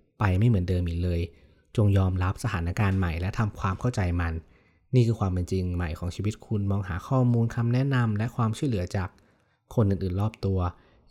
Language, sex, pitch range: Thai, male, 90-115 Hz